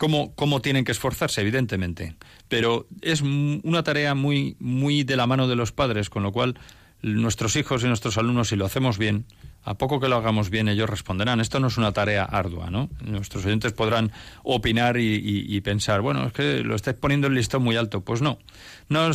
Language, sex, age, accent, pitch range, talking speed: Spanish, male, 40-59, Spanish, 105-140 Hz, 210 wpm